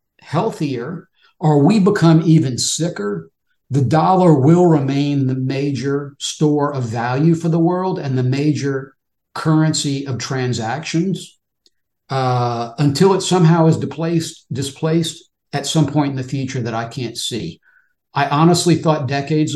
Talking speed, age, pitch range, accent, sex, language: 135 wpm, 50-69, 140-170 Hz, American, male, English